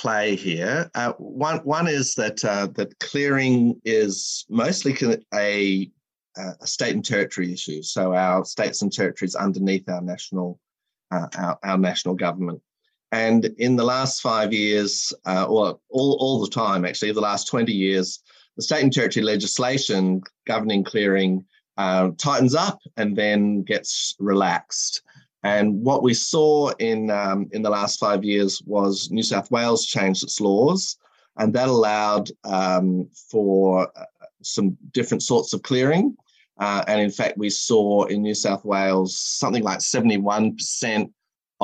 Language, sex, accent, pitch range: English, male, Australian, 95-125 Hz